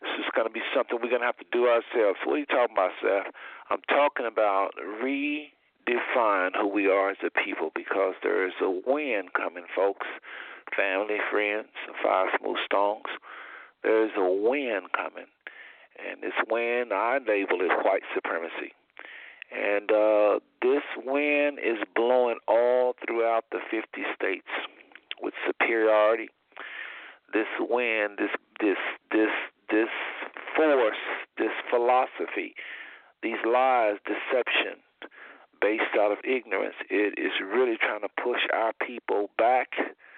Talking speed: 135 wpm